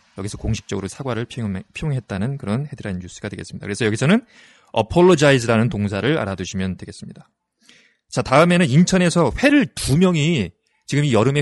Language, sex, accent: Korean, male, native